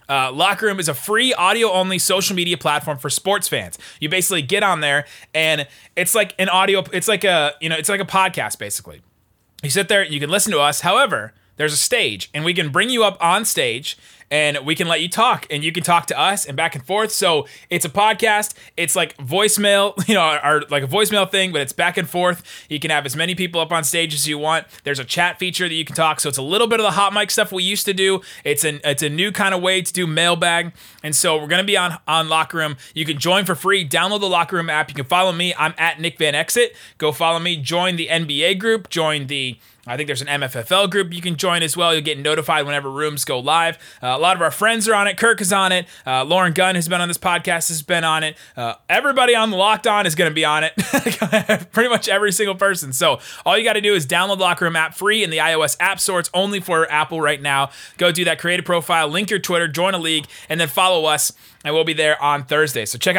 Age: 20-39